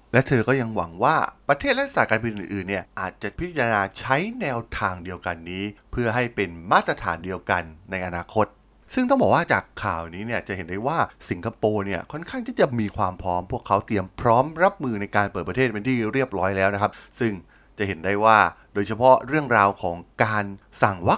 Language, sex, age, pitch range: Thai, male, 20-39, 95-125 Hz